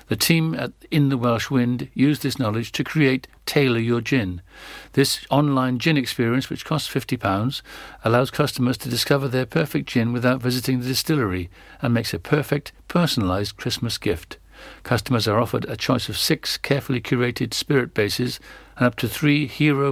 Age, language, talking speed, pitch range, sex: 60-79, English, 170 wpm, 120-155 Hz, male